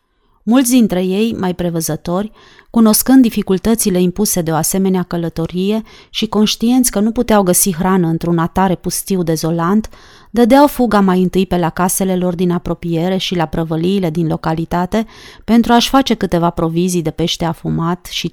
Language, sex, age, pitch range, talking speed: Romanian, female, 30-49, 170-210 Hz, 155 wpm